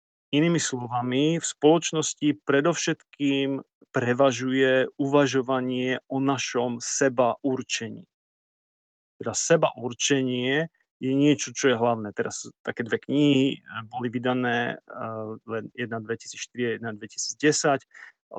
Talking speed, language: 85 wpm, Slovak